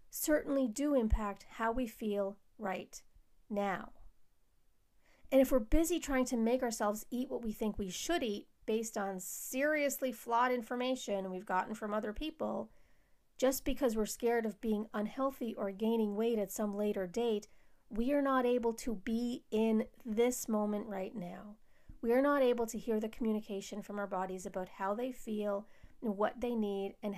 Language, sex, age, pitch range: English, female, 40-59, 205-255 Hz